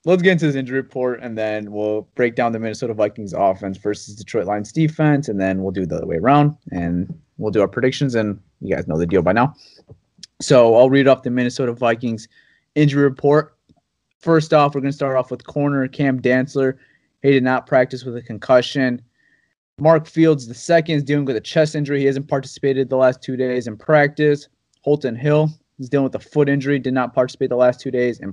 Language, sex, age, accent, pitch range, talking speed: English, male, 20-39, American, 120-145 Hz, 215 wpm